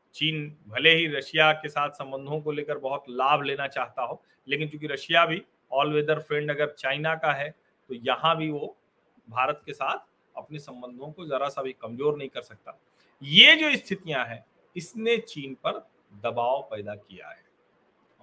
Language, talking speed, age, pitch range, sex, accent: Hindi, 180 wpm, 40-59, 120-160 Hz, male, native